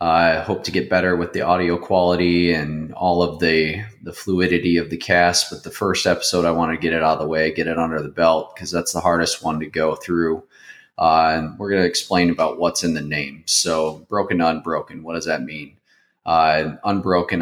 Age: 20-39